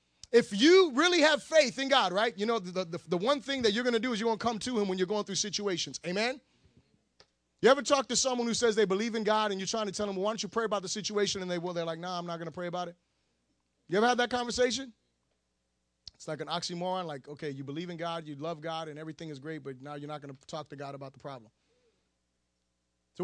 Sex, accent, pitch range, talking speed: male, American, 160-230 Hz, 275 wpm